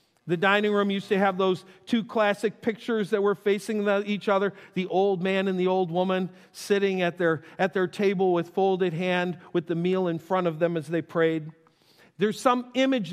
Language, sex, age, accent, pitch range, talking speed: English, male, 50-69, American, 170-230 Hz, 195 wpm